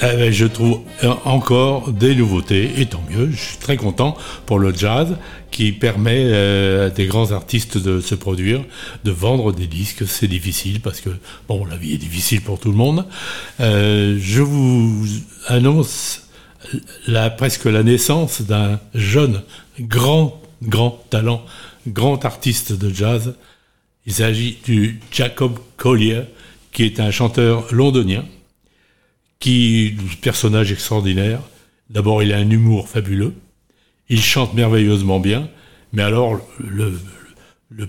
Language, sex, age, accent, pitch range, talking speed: French, male, 60-79, French, 105-130 Hz, 140 wpm